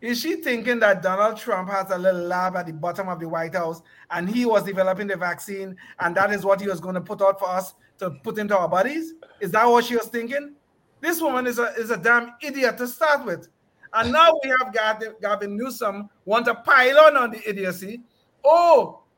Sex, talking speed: male, 215 wpm